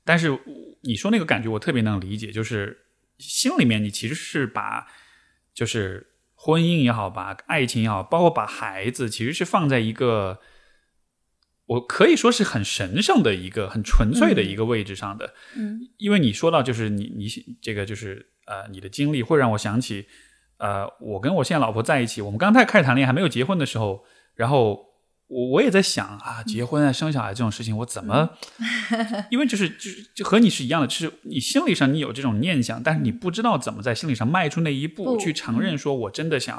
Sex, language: male, Chinese